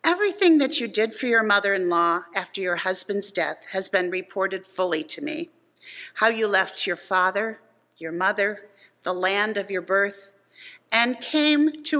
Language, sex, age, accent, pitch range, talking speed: English, female, 50-69, American, 200-300 Hz, 160 wpm